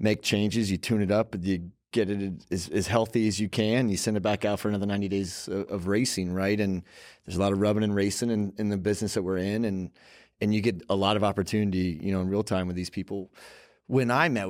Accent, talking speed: American, 255 wpm